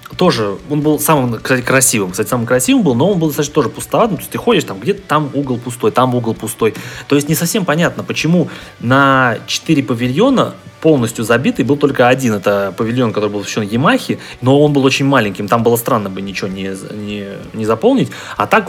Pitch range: 110-145 Hz